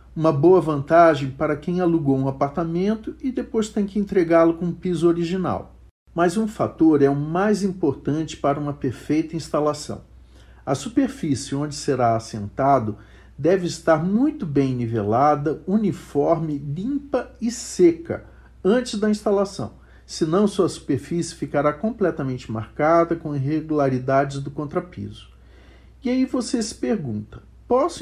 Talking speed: 130 wpm